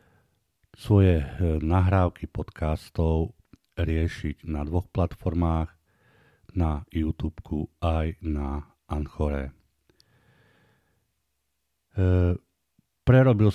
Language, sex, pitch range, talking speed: Slovak, male, 75-90 Hz, 60 wpm